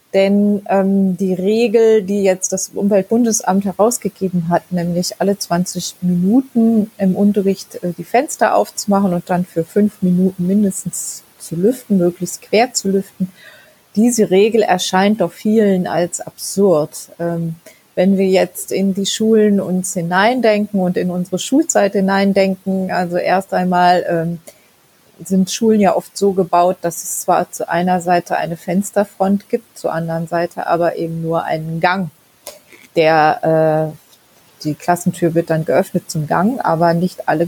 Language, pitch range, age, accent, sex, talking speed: German, 170-200 Hz, 30-49, German, female, 145 wpm